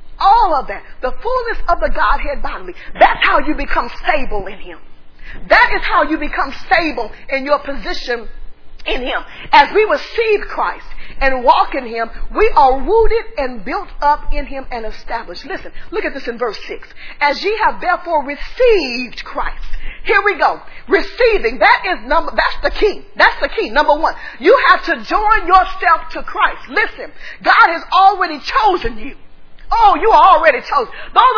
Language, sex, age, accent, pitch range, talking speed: English, female, 40-59, American, 285-415 Hz, 170 wpm